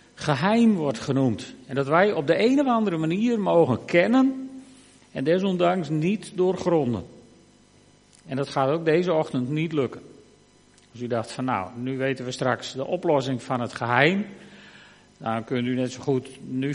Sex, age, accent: male, 50-69, Dutch